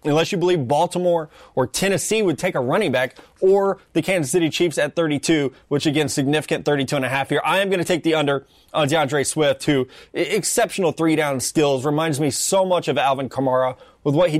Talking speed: 215 wpm